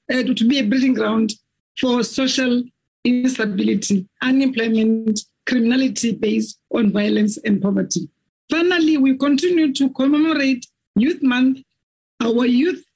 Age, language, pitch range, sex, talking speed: 50-69, English, 220-265 Hz, female, 115 wpm